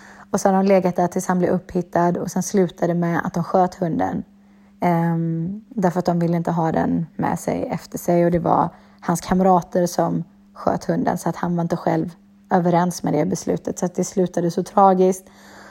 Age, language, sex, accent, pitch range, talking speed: 30-49, Swedish, female, native, 175-200 Hz, 205 wpm